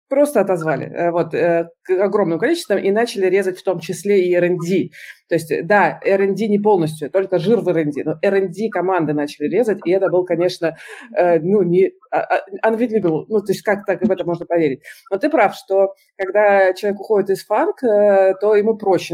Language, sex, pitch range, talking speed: Russian, female, 170-215 Hz, 170 wpm